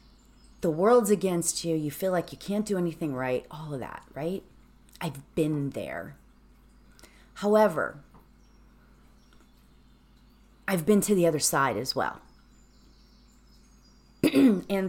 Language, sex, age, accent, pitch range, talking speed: English, female, 30-49, American, 160-225 Hz, 115 wpm